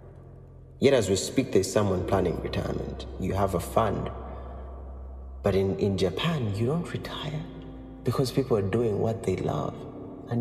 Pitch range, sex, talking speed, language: 95-120 Hz, male, 155 wpm, English